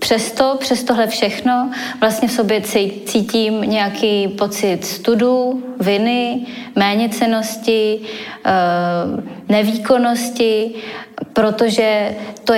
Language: Czech